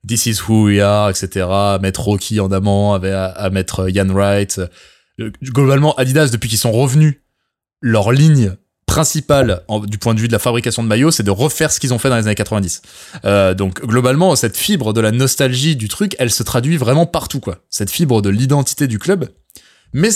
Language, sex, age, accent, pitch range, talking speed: French, male, 20-39, French, 100-135 Hz, 200 wpm